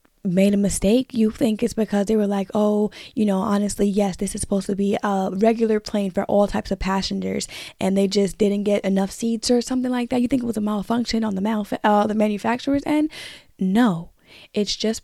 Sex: female